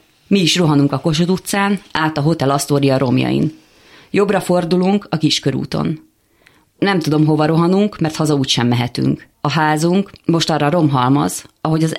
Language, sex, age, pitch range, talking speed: Hungarian, female, 30-49, 140-170 Hz, 155 wpm